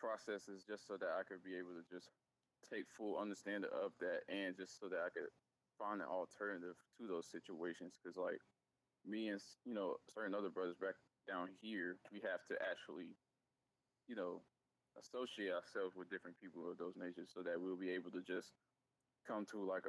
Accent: American